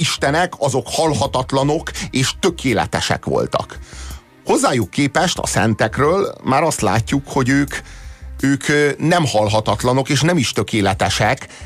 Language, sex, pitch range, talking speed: Hungarian, male, 110-145 Hz, 115 wpm